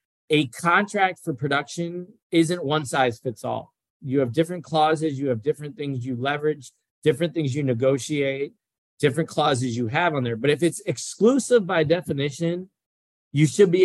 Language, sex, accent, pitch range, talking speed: English, male, American, 130-170 Hz, 165 wpm